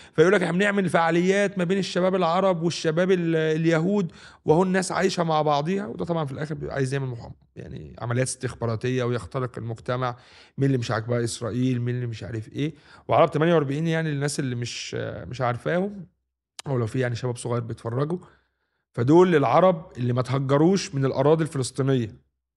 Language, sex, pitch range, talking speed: Arabic, male, 125-165 Hz, 160 wpm